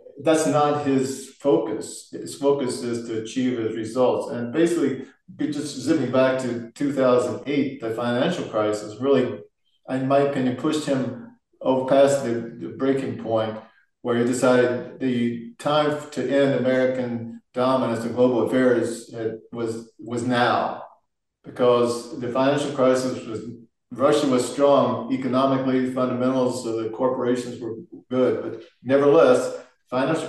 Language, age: English, 50-69